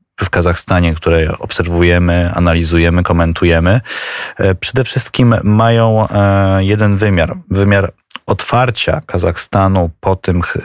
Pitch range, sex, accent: 90-105 Hz, male, native